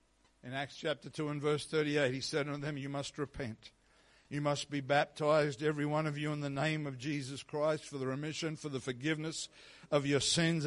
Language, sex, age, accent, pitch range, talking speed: English, male, 60-79, Australian, 140-160 Hz, 210 wpm